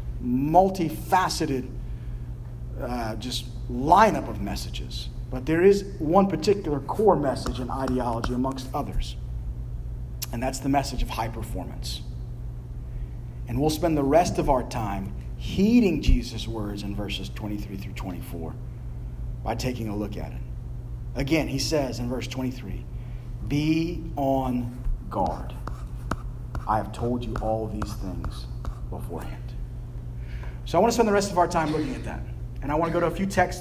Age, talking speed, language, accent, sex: 40-59, 150 wpm, English, American, male